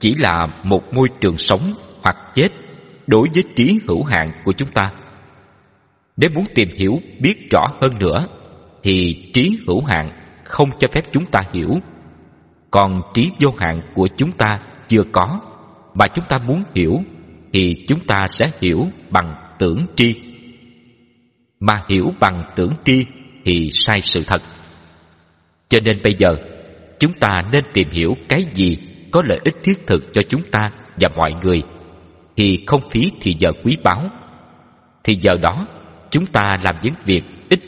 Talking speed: 165 wpm